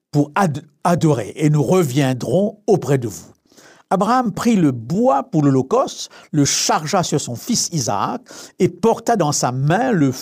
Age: 60-79